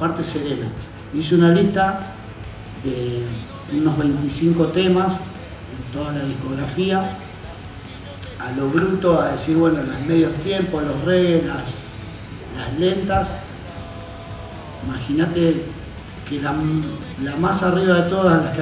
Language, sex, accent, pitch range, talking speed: Spanish, male, Argentinian, 110-170 Hz, 120 wpm